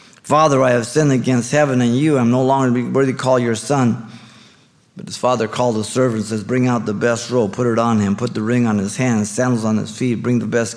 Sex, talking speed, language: male, 260 wpm, English